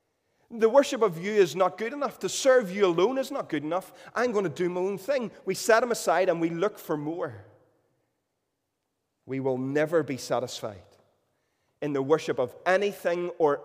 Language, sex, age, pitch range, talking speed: English, male, 30-49, 140-205 Hz, 190 wpm